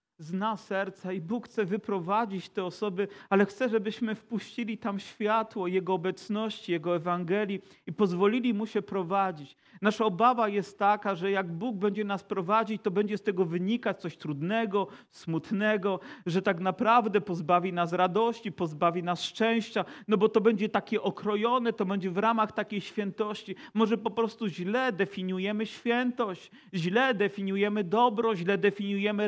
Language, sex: Polish, male